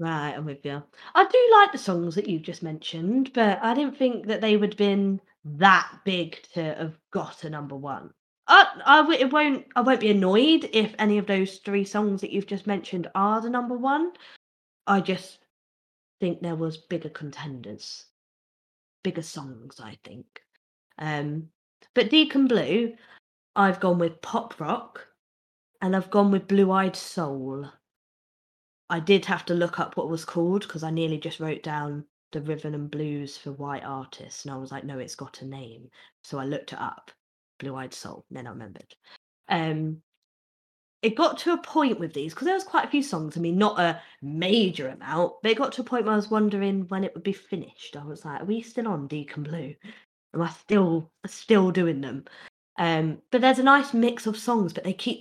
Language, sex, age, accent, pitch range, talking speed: English, female, 20-39, British, 155-225 Hz, 195 wpm